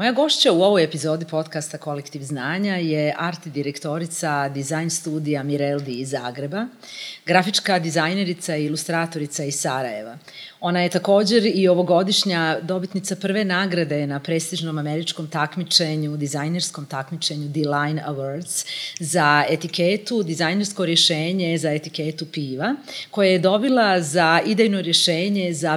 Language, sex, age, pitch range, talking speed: English, female, 30-49, 150-195 Hz, 120 wpm